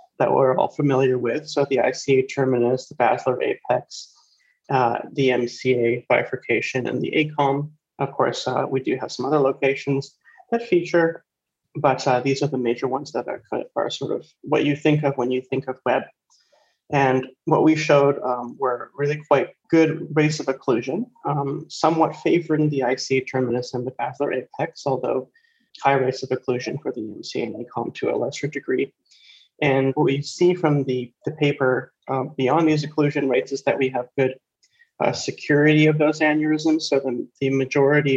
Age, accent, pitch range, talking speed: 30-49, American, 130-155 Hz, 180 wpm